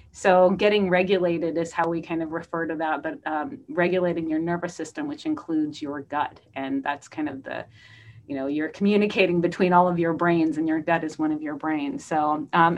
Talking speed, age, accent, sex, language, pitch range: 210 wpm, 30-49, American, female, English, 155-190 Hz